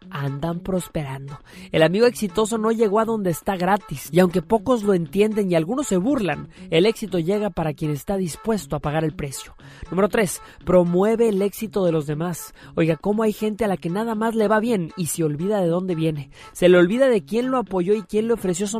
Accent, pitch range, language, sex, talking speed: Mexican, 165-215 Hz, Spanish, male, 220 wpm